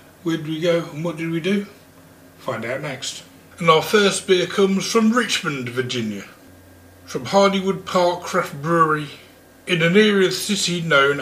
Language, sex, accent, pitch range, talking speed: English, male, British, 140-190 Hz, 170 wpm